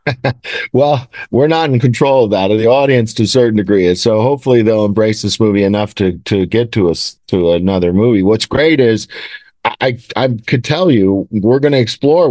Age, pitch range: 50-69, 110-130 Hz